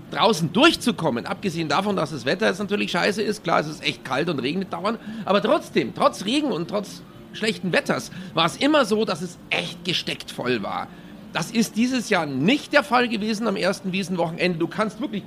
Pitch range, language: 165-220 Hz, German